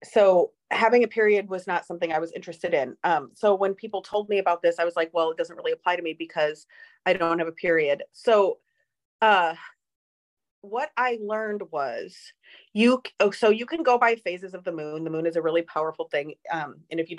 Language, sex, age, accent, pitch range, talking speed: English, female, 30-49, American, 165-225 Hz, 215 wpm